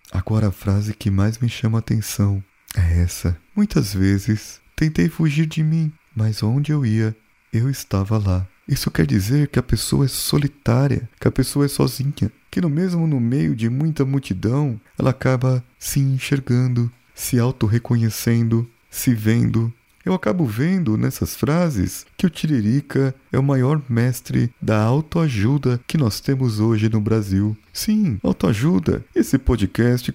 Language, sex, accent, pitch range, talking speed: Portuguese, male, Brazilian, 105-140 Hz, 155 wpm